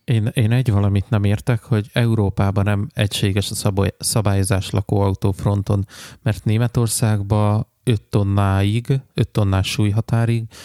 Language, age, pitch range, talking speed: Hungarian, 20-39, 100-115 Hz, 125 wpm